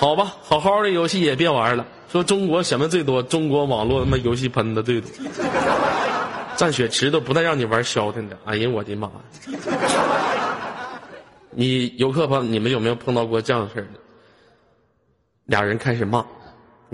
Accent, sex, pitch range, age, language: native, male, 115-180 Hz, 20-39, Chinese